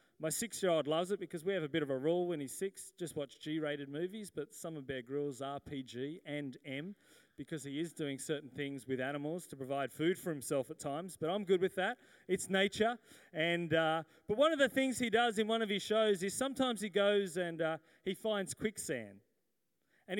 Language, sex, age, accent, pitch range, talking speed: English, male, 30-49, Australian, 160-215 Hz, 220 wpm